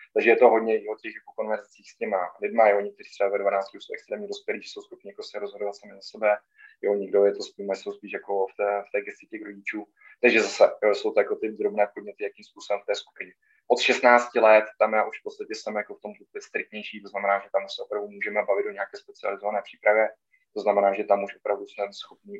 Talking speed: 240 wpm